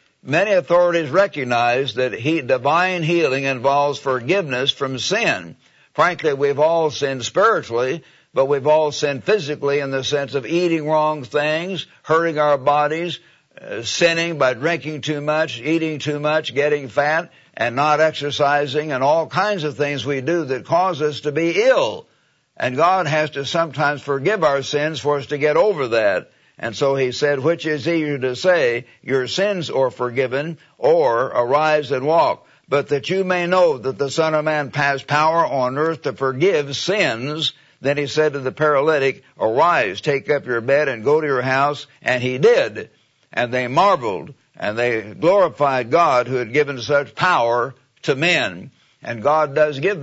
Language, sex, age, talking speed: English, male, 60-79, 170 wpm